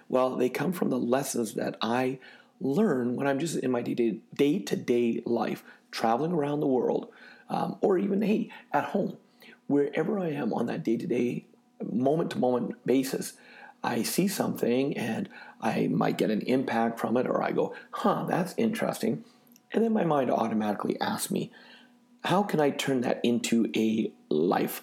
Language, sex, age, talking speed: English, male, 40-59, 160 wpm